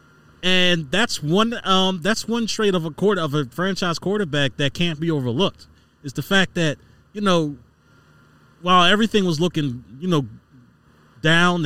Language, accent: English, American